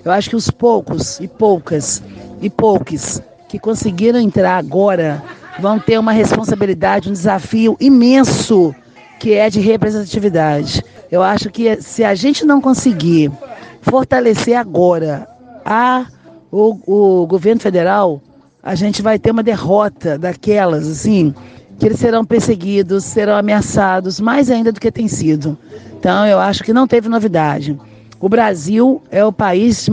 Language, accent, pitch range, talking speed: Portuguese, Brazilian, 175-225 Hz, 145 wpm